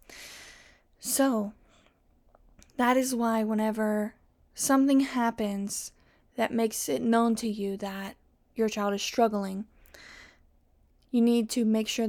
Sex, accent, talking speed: female, American, 115 wpm